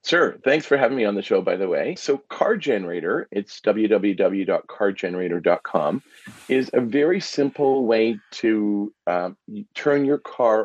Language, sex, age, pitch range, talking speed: English, male, 40-59, 100-125 Hz, 145 wpm